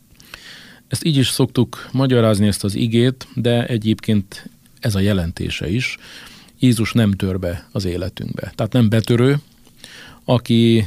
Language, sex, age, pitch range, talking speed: Hungarian, male, 50-69, 100-120 Hz, 135 wpm